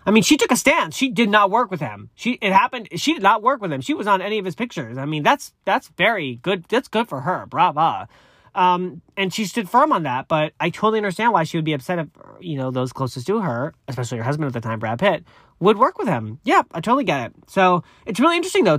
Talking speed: 270 wpm